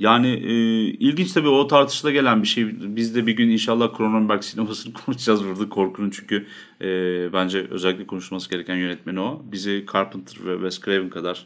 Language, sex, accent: Turkish, male, native